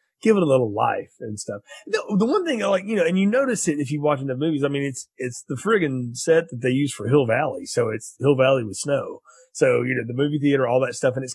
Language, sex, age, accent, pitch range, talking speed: English, male, 30-49, American, 125-180 Hz, 290 wpm